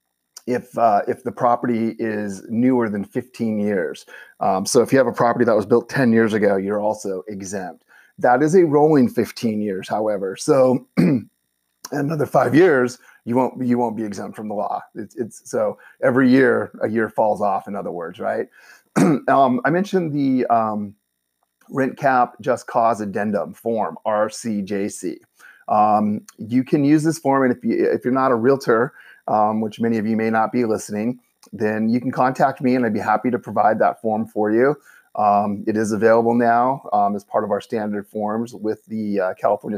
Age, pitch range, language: 30-49, 105-125 Hz, English